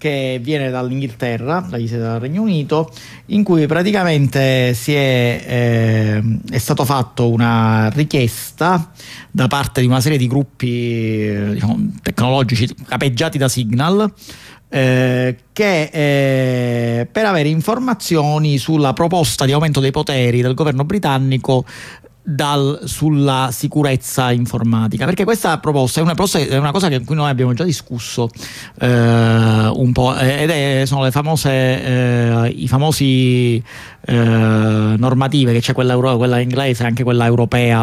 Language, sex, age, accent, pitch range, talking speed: Italian, male, 50-69, native, 120-155 Hz, 140 wpm